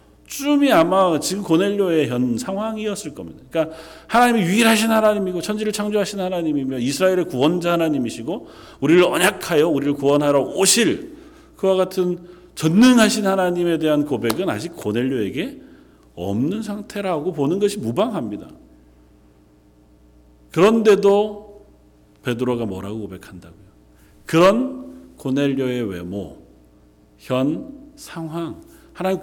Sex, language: male, Korean